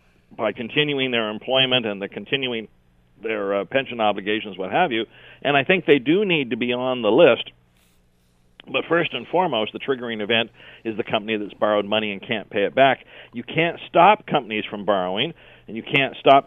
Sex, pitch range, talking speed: male, 110-145 Hz, 195 wpm